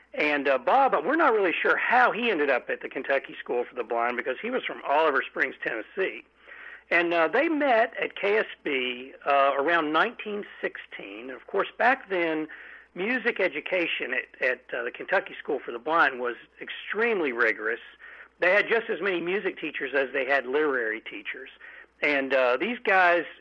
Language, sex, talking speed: English, male, 175 wpm